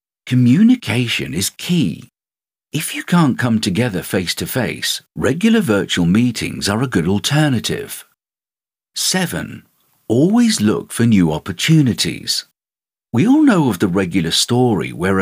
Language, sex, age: English, male, 50-69